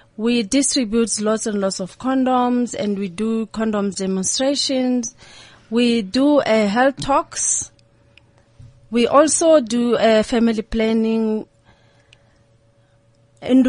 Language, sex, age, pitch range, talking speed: English, female, 30-49, 190-240 Hz, 105 wpm